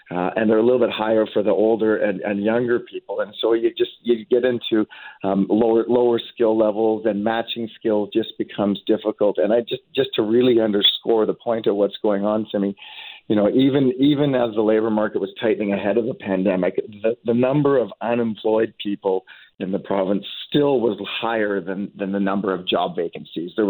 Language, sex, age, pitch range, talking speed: English, male, 40-59, 105-125 Hz, 200 wpm